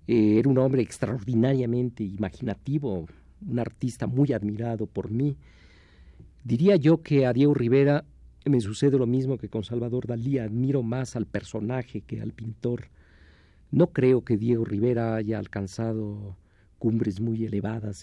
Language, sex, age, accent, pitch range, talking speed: Spanish, male, 50-69, Mexican, 100-125 Hz, 140 wpm